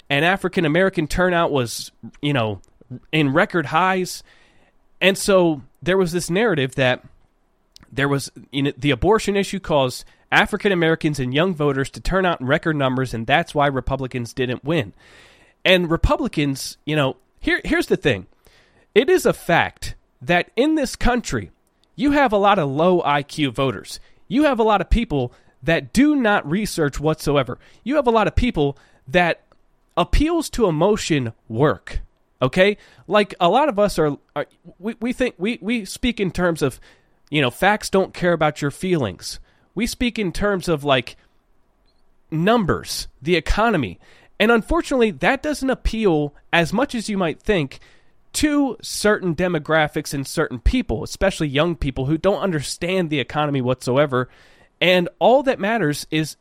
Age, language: 30-49, English